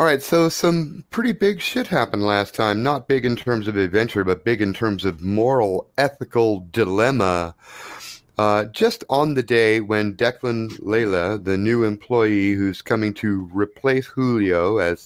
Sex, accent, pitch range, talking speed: male, American, 95-115 Hz, 165 wpm